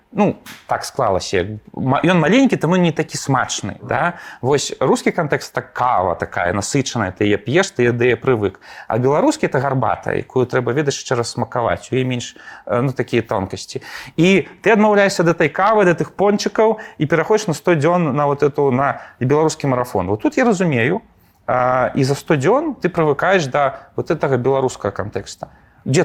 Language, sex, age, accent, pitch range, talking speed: Russian, male, 30-49, native, 125-175 Hz, 170 wpm